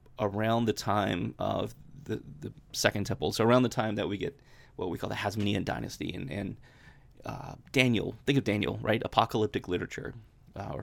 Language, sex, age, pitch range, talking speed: English, male, 30-49, 105-130 Hz, 185 wpm